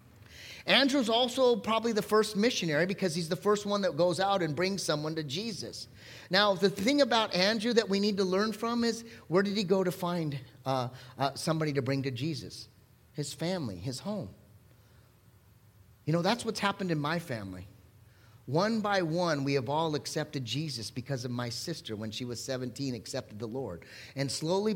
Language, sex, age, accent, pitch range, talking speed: English, male, 30-49, American, 125-200 Hz, 185 wpm